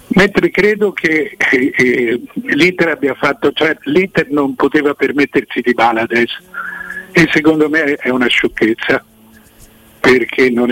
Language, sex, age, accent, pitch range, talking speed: Italian, male, 50-69, native, 125-175 Hz, 135 wpm